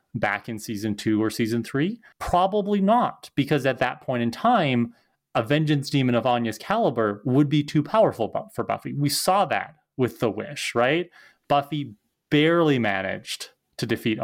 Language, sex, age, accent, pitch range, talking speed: English, male, 20-39, American, 110-145 Hz, 165 wpm